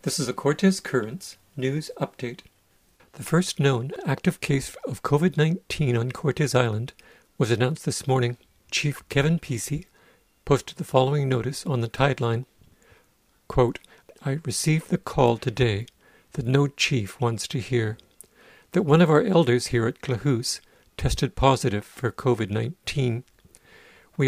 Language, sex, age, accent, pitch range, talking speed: English, male, 50-69, American, 120-145 Hz, 140 wpm